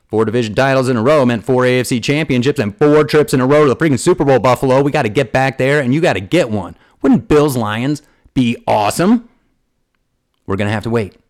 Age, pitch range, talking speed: 40-59, 115-145 Hz, 235 wpm